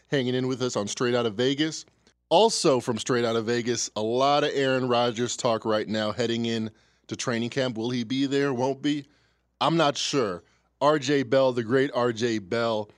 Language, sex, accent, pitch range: English, male, American, 115-145 Hz